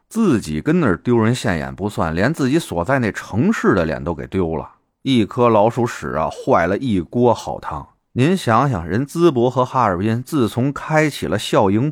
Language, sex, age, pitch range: Chinese, male, 30-49, 90-130 Hz